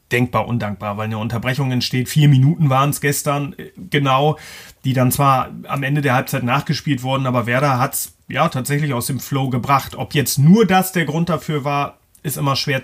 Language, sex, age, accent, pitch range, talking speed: German, male, 30-49, German, 135-165 Hz, 195 wpm